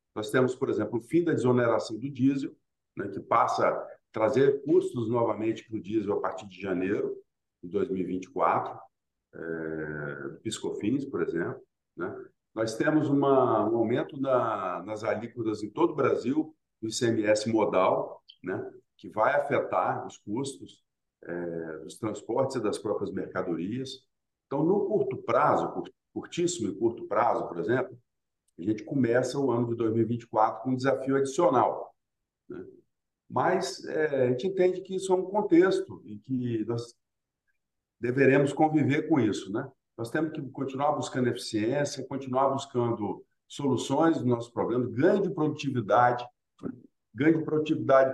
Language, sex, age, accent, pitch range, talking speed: Portuguese, male, 50-69, Brazilian, 110-155 Hz, 145 wpm